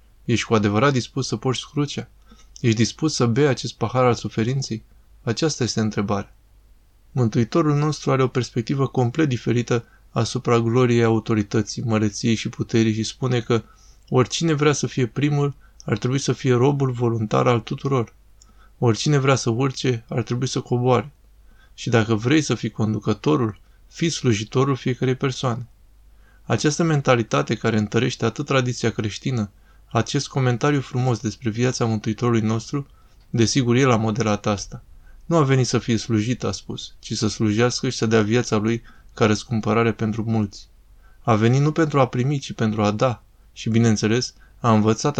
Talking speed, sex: 155 wpm, male